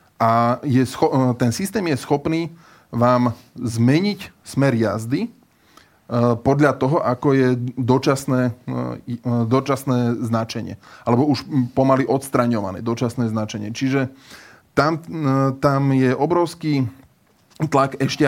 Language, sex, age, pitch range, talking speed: Slovak, male, 20-39, 120-140 Hz, 100 wpm